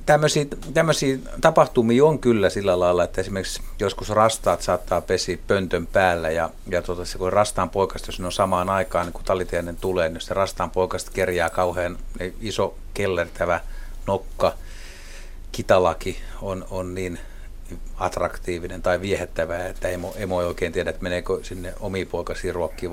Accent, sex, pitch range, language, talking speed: native, male, 85-110 Hz, Finnish, 140 wpm